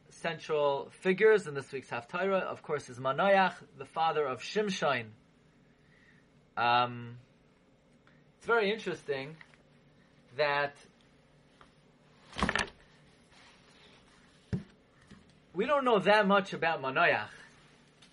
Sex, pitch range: male, 140-195 Hz